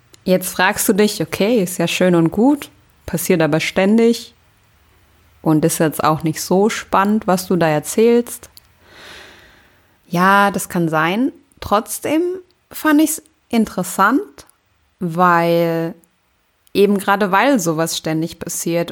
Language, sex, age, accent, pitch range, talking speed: German, female, 20-39, German, 160-210 Hz, 125 wpm